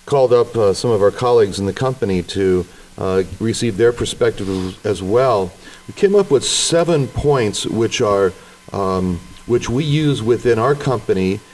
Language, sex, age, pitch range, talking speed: English, male, 40-59, 100-130 Hz, 165 wpm